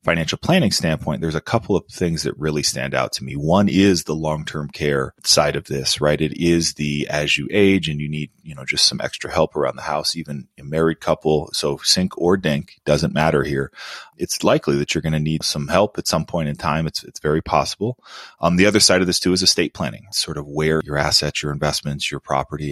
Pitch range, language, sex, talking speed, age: 75-95 Hz, English, male, 240 wpm, 30-49